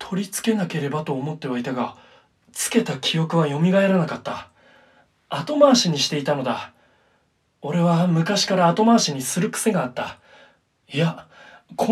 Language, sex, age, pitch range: Japanese, male, 20-39, 135-205 Hz